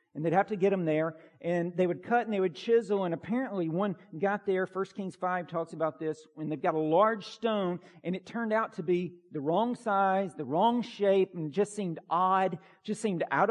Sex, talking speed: male, 225 wpm